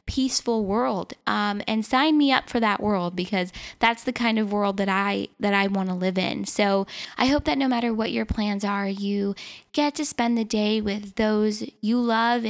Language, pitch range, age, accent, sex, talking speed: English, 200-235 Hz, 10-29, American, female, 210 wpm